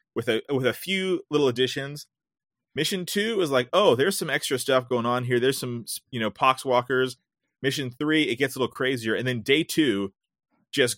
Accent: American